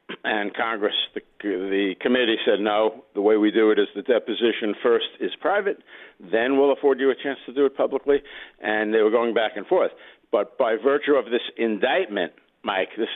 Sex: male